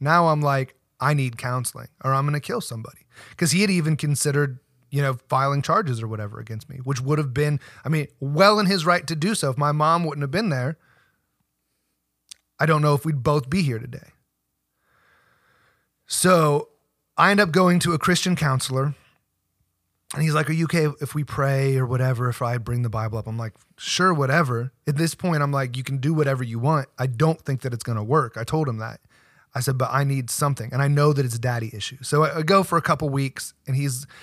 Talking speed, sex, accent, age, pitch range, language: 230 wpm, male, American, 30-49, 130-155 Hz, English